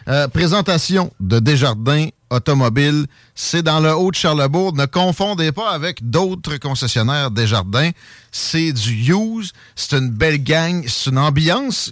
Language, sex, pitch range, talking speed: French, male, 115-160 Hz, 140 wpm